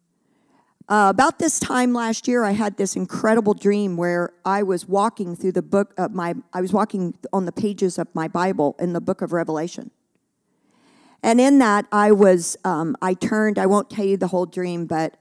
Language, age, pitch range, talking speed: English, 50-69, 185-235 Hz, 195 wpm